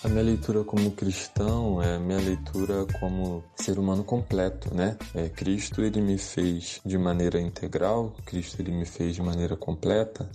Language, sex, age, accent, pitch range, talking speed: Portuguese, male, 20-39, Brazilian, 95-110 Hz, 160 wpm